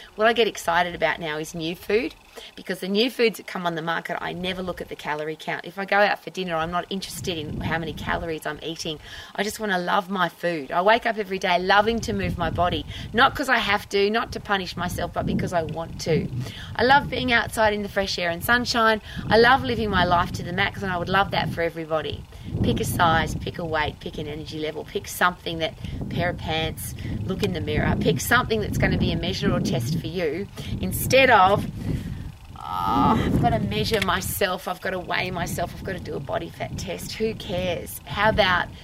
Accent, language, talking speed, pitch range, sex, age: Australian, English, 230 wpm, 170-230 Hz, female, 30-49